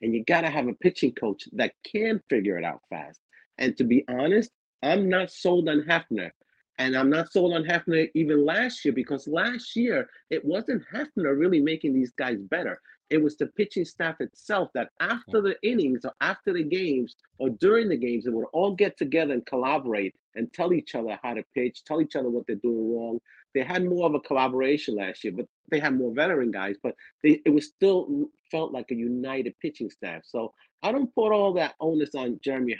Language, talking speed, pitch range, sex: English, 210 wpm, 135-200 Hz, male